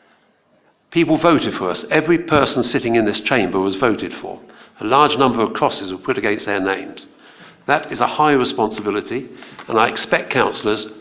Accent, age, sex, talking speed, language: British, 50-69, male, 175 wpm, English